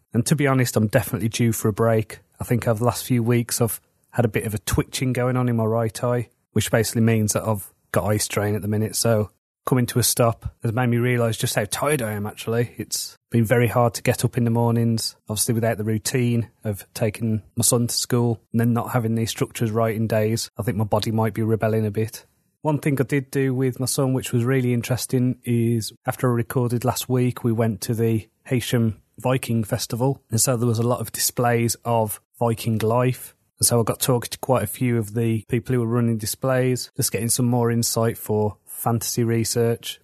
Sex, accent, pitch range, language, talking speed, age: male, British, 110-125 Hz, English, 230 wpm, 30-49